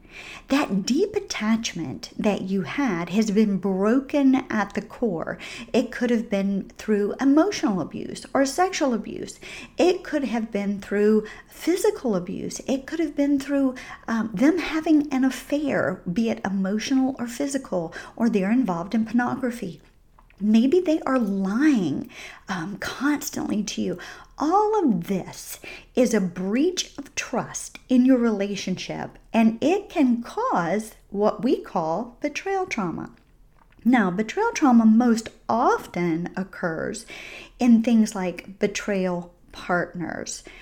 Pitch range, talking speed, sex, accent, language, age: 190-270 Hz, 130 wpm, female, American, English, 50-69